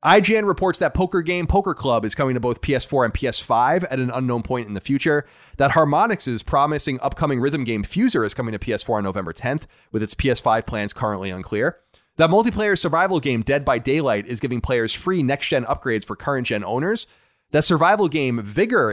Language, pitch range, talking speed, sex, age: English, 110-155 Hz, 195 wpm, male, 30-49